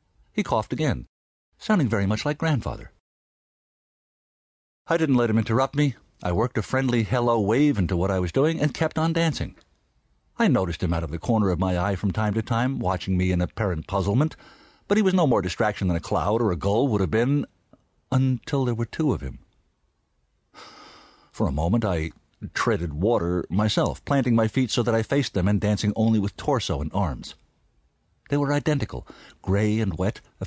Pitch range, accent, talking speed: 90-130 Hz, American, 195 wpm